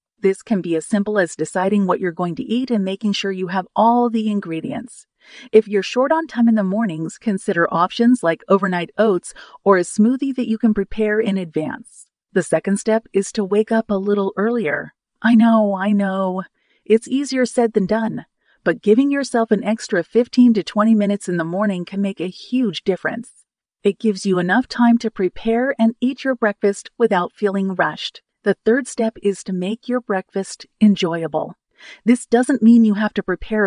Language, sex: English, female